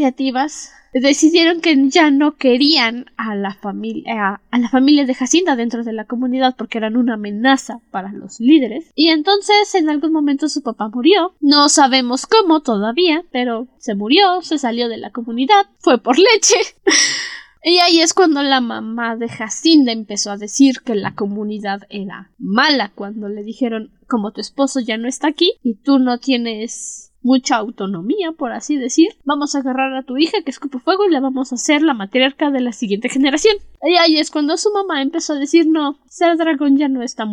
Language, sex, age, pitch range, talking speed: Spanish, female, 10-29, 230-310 Hz, 190 wpm